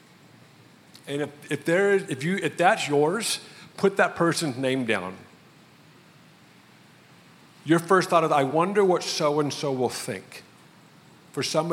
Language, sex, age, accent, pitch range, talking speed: English, male, 50-69, American, 125-160 Hz, 150 wpm